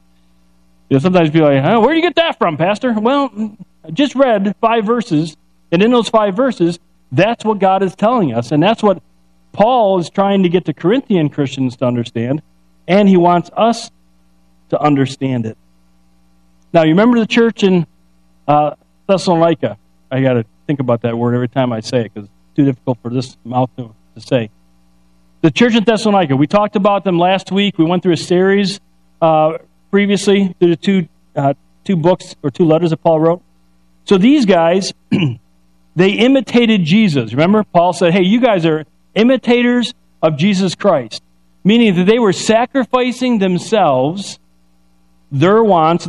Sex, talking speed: male, 175 wpm